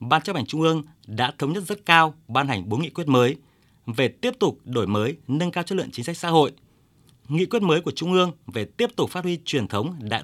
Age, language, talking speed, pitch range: 20-39, Vietnamese, 250 wpm, 115-155 Hz